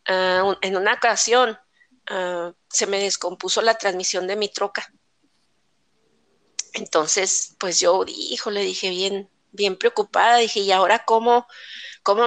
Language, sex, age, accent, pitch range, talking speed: Spanish, female, 40-59, Mexican, 195-240 Hz, 115 wpm